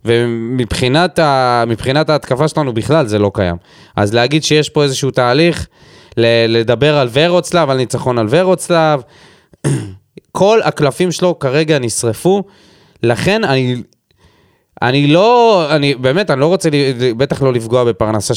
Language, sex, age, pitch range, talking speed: Hebrew, male, 20-39, 115-170 Hz, 125 wpm